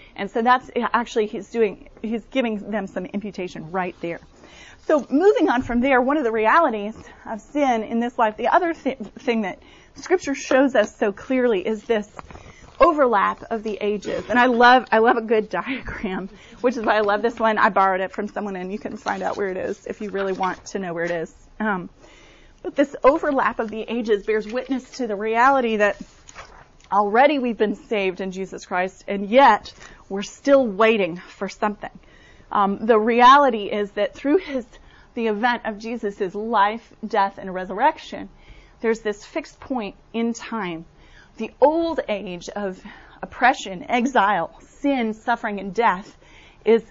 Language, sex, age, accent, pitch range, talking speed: English, female, 30-49, American, 200-245 Hz, 180 wpm